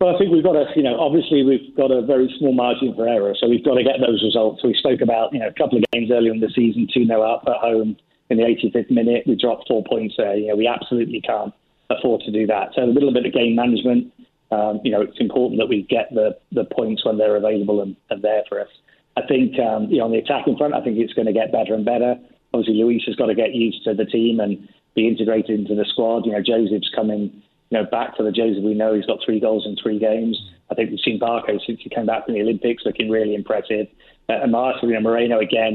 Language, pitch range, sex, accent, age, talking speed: English, 110-120 Hz, male, British, 30-49, 270 wpm